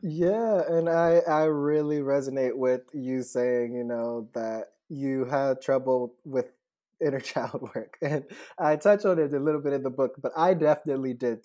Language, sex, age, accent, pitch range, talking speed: English, male, 20-39, American, 120-150 Hz, 180 wpm